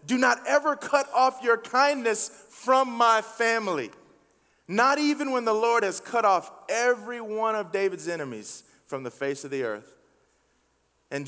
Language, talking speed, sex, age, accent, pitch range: English, 160 wpm, male, 30-49, American, 195-280 Hz